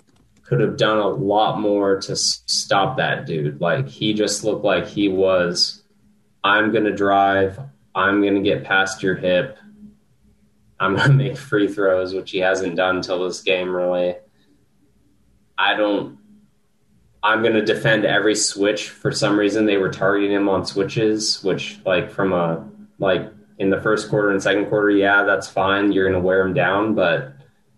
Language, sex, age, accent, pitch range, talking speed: English, male, 20-39, American, 95-105 Hz, 175 wpm